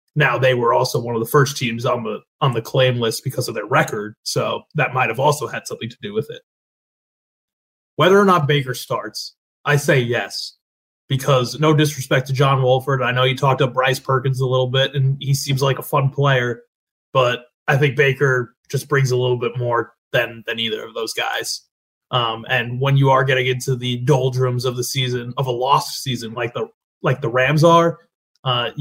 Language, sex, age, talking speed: English, male, 20-39, 210 wpm